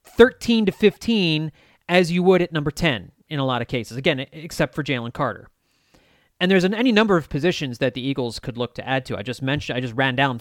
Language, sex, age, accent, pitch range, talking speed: English, male, 30-49, American, 135-195 Hz, 220 wpm